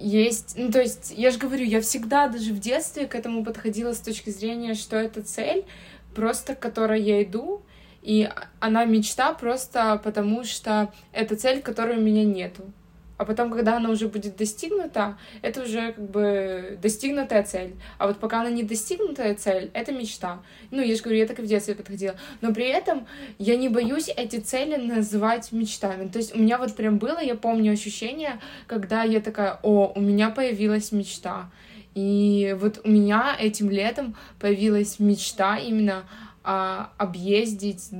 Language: Ukrainian